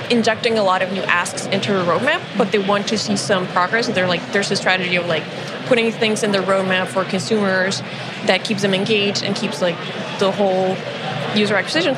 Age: 20-39